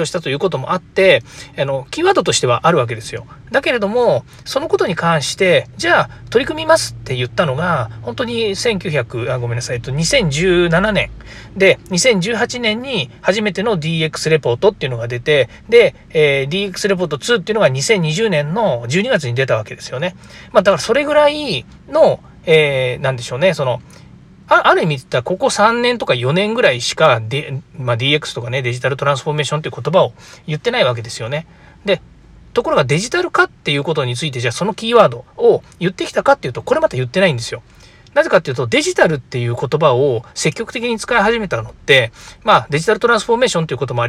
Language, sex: Japanese, male